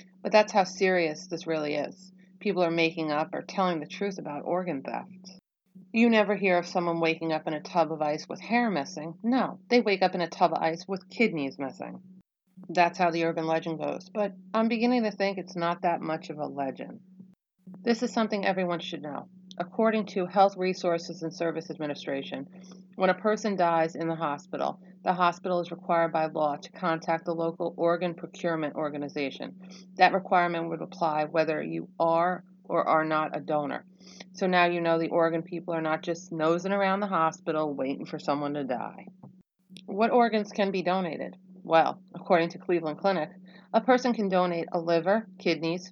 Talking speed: 190 wpm